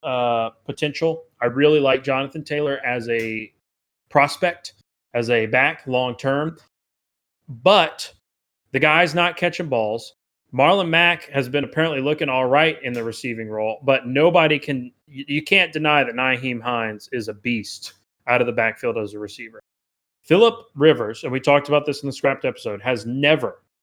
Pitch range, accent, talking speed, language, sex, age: 115-140 Hz, American, 165 wpm, English, male, 30-49